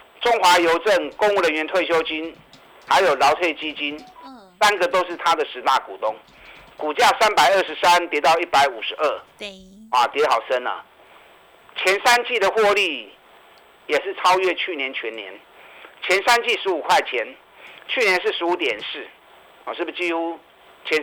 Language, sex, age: Chinese, male, 50-69